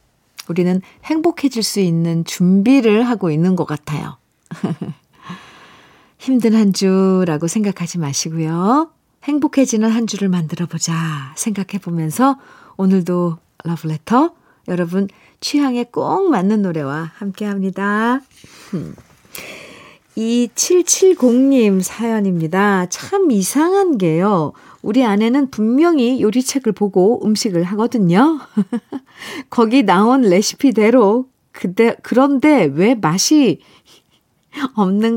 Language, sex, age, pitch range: Korean, female, 40-59, 175-260 Hz